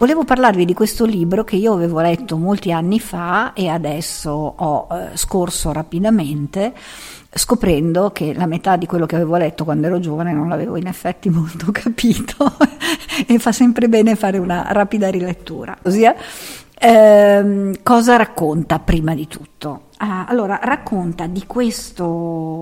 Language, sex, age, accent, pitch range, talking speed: Italian, female, 50-69, native, 170-220 Hz, 145 wpm